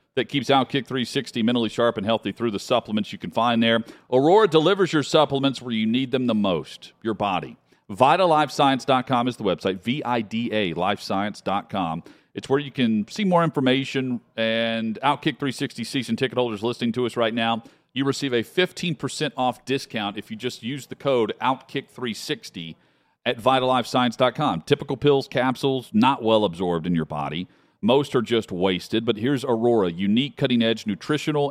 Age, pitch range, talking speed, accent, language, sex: 40-59, 105-135 Hz, 160 wpm, American, English, male